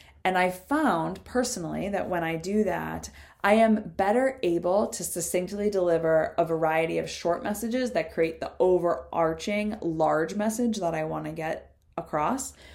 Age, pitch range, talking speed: 20-39, 160-210 Hz, 155 wpm